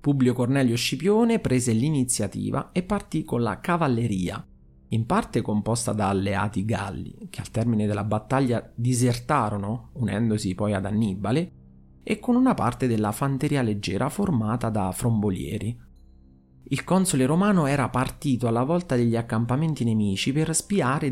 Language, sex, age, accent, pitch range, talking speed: Italian, male, 30-49, native, 105-140 Hz, 135 wpm